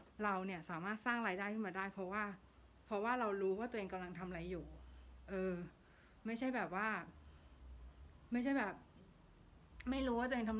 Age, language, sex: 60-79, Thai, female